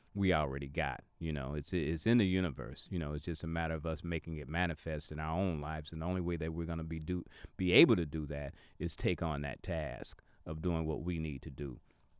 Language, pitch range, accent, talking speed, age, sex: English, 85-115 Hz, American, 255 wpm, 40-59, male